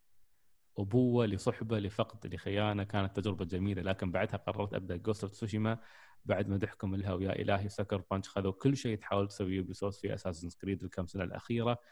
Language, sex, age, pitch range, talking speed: Arabic, male, 20-39, 95-110 Hz, 160 wpm